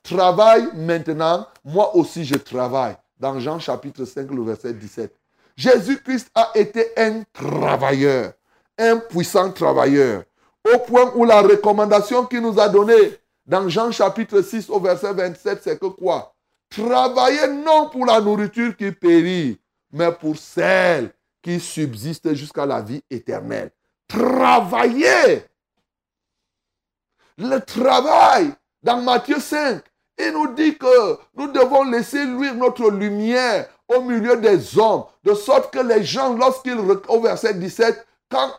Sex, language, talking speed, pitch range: male, French, 135 wpm, 190-270 Hz